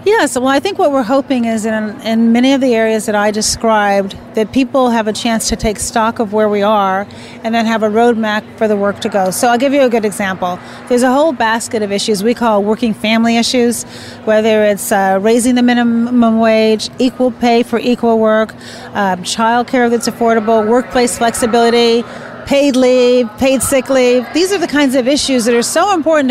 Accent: American